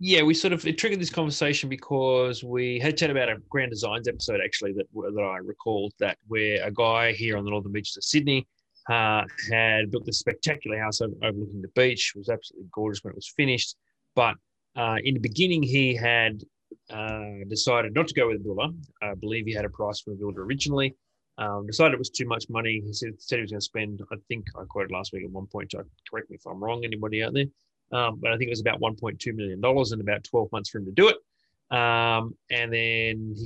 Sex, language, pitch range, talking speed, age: male, English, 105-130 Hz, 230 wpm, 20-39